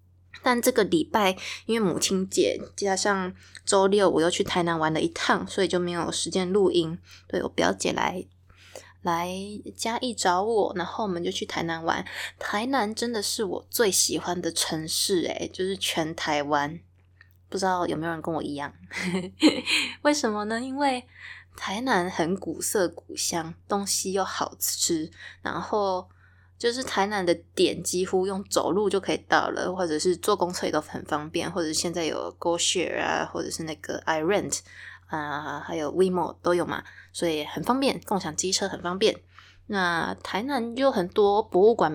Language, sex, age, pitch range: Chinese, female, 20-39, 160-215 Hz